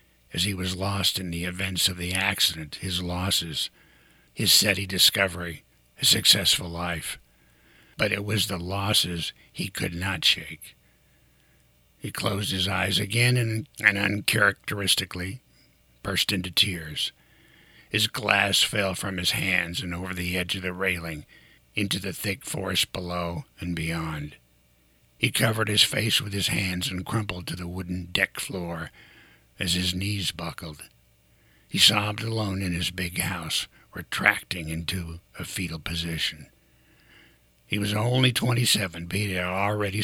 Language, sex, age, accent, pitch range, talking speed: English, male, 60-79, American, 85-100 Hz, 145 wpm